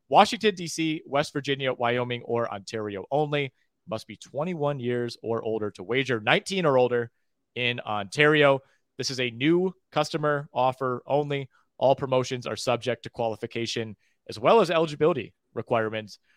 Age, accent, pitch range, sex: 30-49, American, 120-145 Hz, male